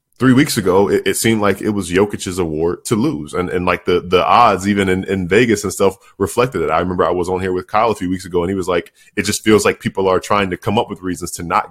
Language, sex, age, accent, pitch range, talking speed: English, male, 10-29, American, 90-105 Hz, 290 wpm